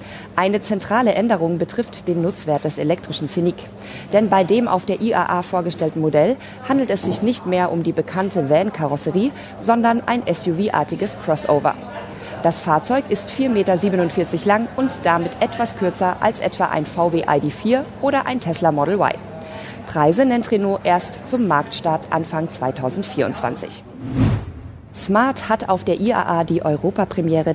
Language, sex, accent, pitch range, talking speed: German, female, German, 150-210 Hz, 140 wpm